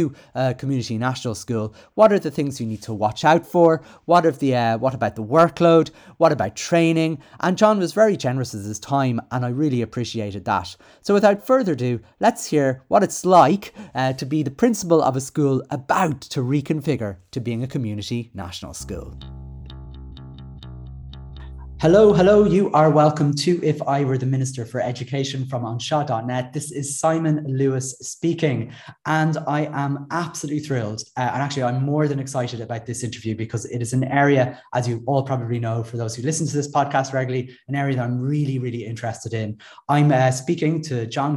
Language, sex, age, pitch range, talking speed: English, male, 30-49, 120-155 Hz, 190 wpm